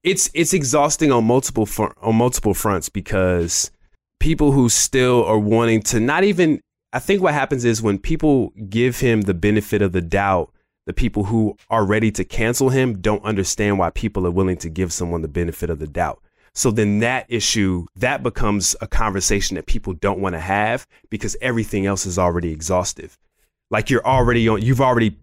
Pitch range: 95-115 Hz